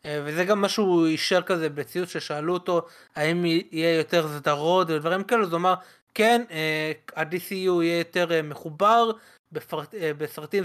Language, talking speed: Hebrew, 135 wpm